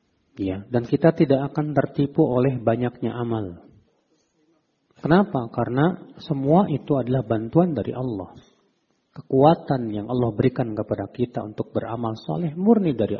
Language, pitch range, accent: Indonesian, 110-145 Hz, native